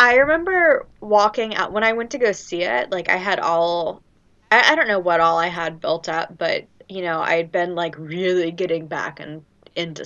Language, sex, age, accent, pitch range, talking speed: English, female, 10-29, American, 165-210 Hz, 225 wpm